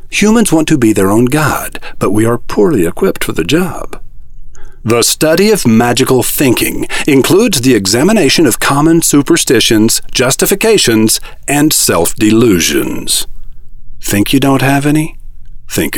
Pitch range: 110-160 Hz